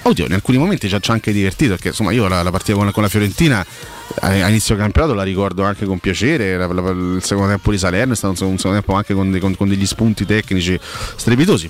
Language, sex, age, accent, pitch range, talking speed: Italian, male, 30-49, native, 100-135 Hz, 255 wpm